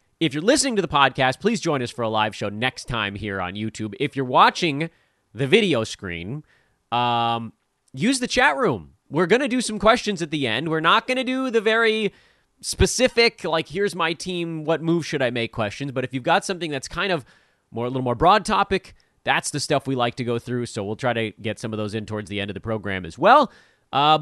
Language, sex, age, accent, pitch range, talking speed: English, male, 30-49, American, 115-170 Hz, 240 wpm